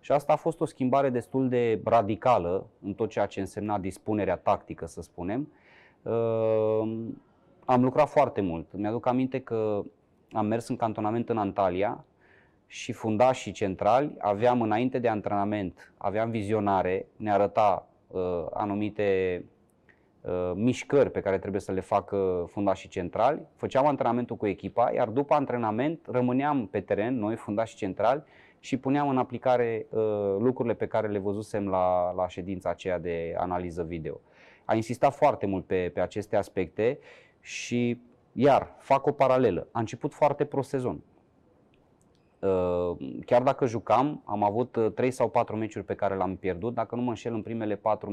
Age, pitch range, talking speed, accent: 20-39, 95-120 Hz, 150 wpm, native